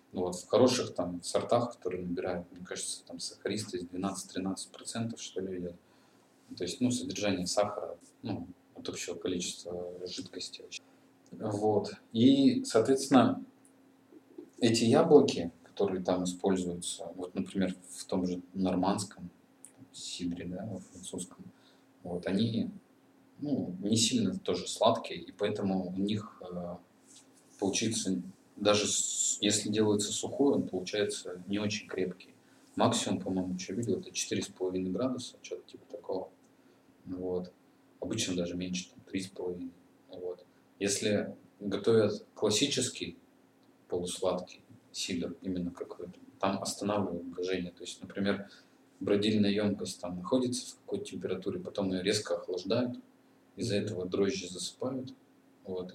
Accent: native